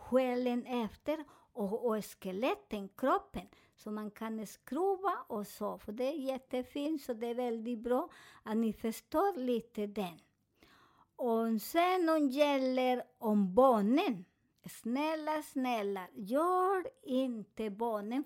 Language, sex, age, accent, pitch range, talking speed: Swedish, male, 50-69, American, 225-285 Hz, 125 wpm